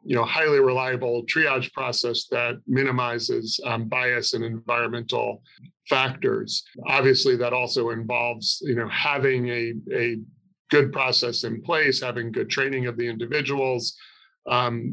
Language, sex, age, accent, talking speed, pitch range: English, male, 40-59, American, 135 wpm, 120-130 Hz